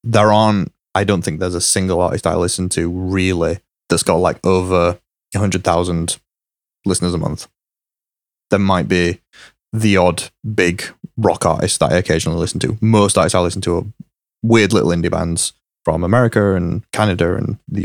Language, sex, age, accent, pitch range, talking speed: English, male, 20-39, British, 90-115 Hz, 175 wpm